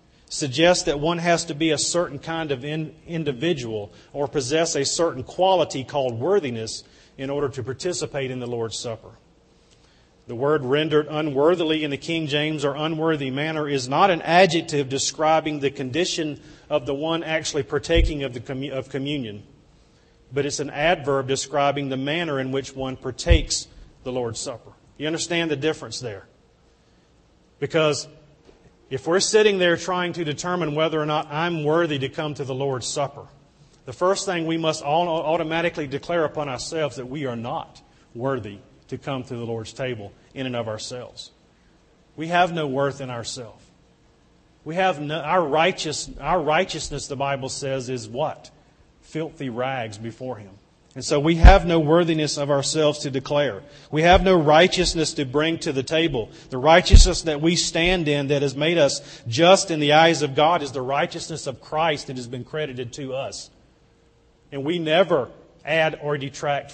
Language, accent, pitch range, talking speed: English, American, 135-160 Hz, 170 wpm